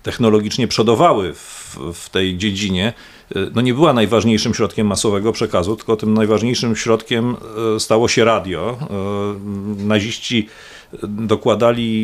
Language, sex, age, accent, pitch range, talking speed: Polish, male, 40-59, native, 105-120 Hz, 110 wpm